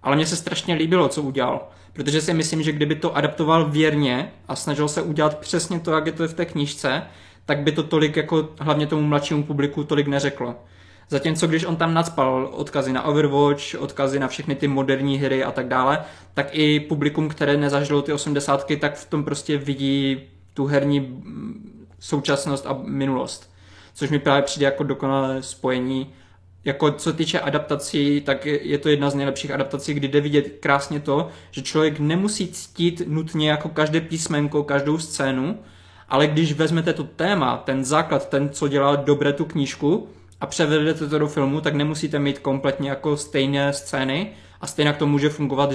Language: Czech